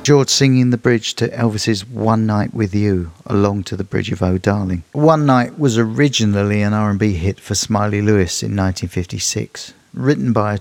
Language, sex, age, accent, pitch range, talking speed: English, male, 50-69, British, 100-120 Hz, 180 wpm